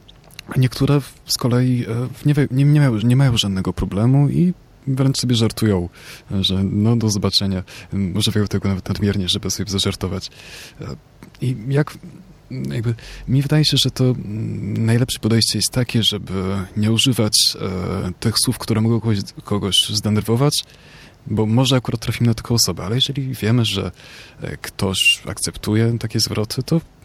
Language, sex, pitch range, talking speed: Polish, male, 95-125 Hz, 135 wpm